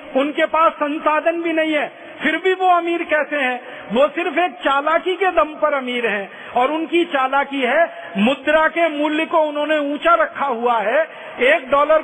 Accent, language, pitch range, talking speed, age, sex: native, Hindi, 245-310 Hz, 180 wpm, 40-59, male